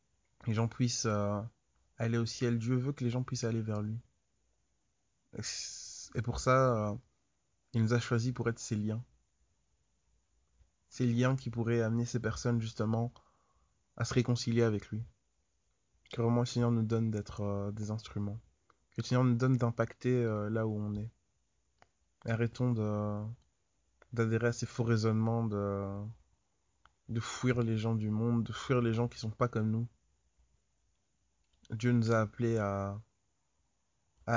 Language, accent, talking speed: French, French, 165 wpm